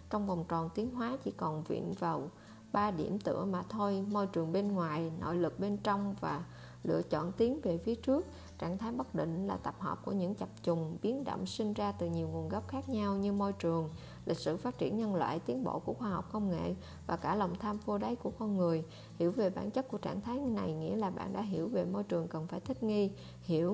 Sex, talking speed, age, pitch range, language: female, 245 wpm, 20-39, 160-210 Hz, Vietnamese